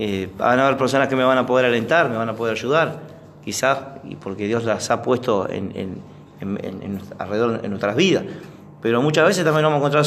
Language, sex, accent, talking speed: Spanish, male, Argentinian, 225 wpm